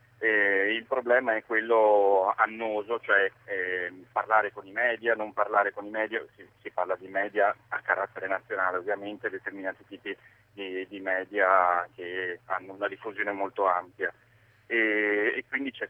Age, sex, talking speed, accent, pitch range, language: 30-49, male, 155 wpm, native, 95-110 Hz, Italian